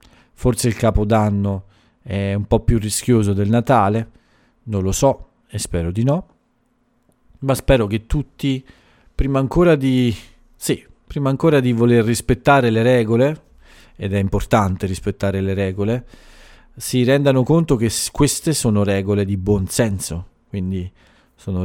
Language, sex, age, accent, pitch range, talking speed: Italian, male, 40-59, native, 95-120 Hz, 140 wpm